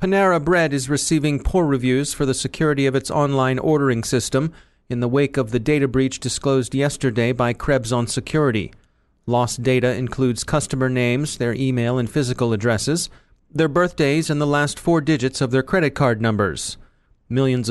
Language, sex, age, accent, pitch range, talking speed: English, male, 40-59, American, 125-155 Hz, 170 wpm